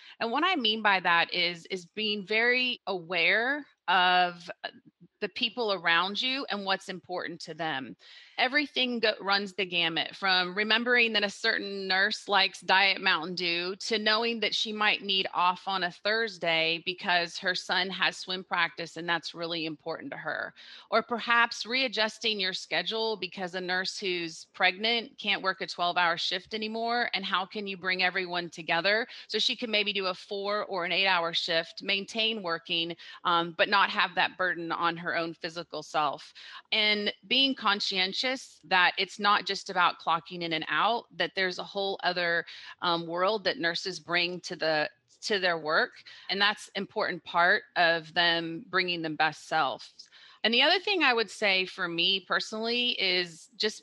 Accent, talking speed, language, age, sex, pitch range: American, 175 wpm, English, 30-49, female, 175-215 Hz